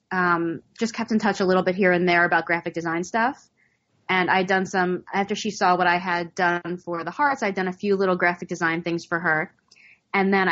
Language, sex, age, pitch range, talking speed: English, female, 20-39, 175-200 Hz, 235 wpm